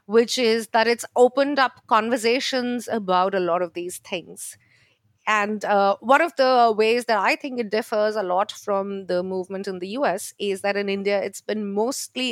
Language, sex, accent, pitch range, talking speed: English, female, Indian, 190-235 Hz, 190 wpm